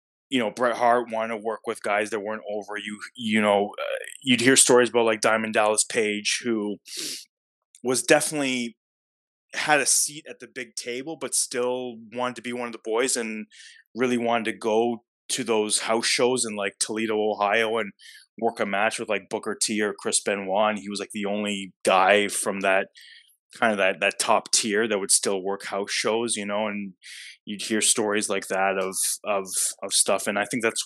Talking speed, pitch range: 200 wpm, 105-120 Hz